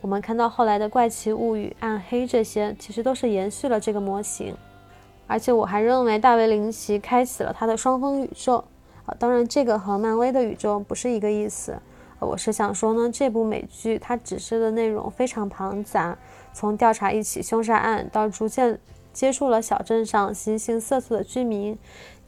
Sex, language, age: female, Chinese, 20-39